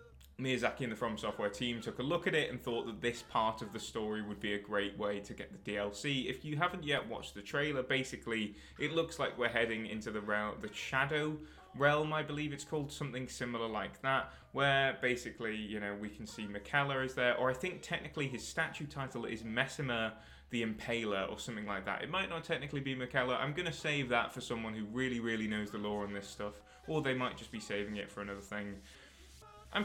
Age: 20-39